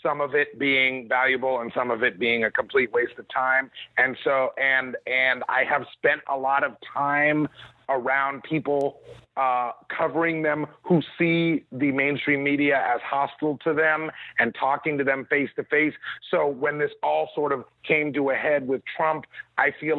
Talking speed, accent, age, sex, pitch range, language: 185 wpm, American, 40-59, male, 130-150 Hz, English